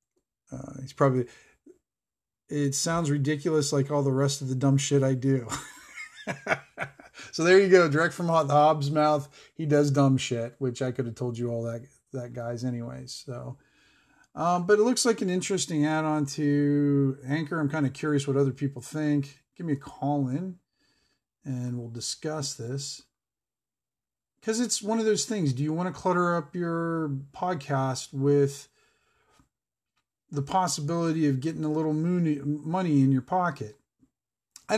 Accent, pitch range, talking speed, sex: American, 130-160 Hz, 160 wpm, male